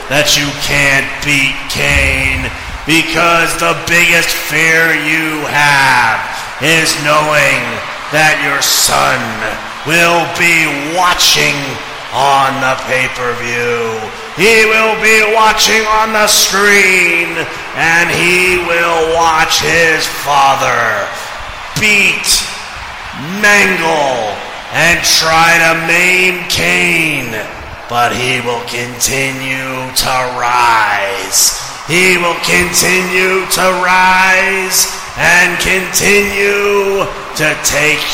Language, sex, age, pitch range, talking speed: English, male, 30-49, 135-170 Hz, 90 wpm